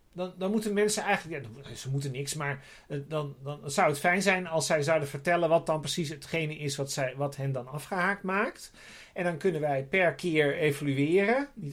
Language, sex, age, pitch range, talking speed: Dutch, male, 40-59, 140-180 Hz, 205 wpm